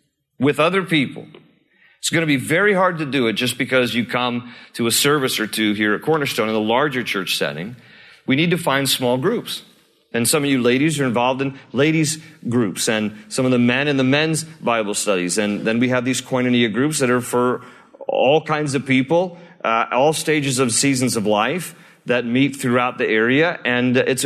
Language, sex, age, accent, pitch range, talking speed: English, male, 40-59, American, 105-150 Hz, 205 wpm